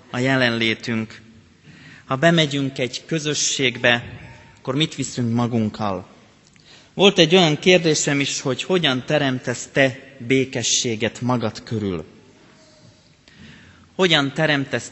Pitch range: 120-145 Hz